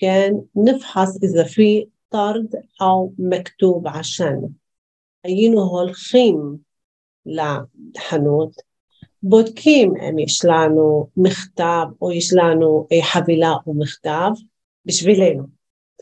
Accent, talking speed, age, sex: native, 80 wpm, 40-59, female